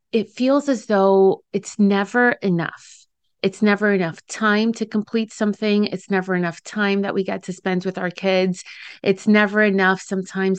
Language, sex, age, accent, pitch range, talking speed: English, female, 30-49, American, 185-225 Hz, 170 wpm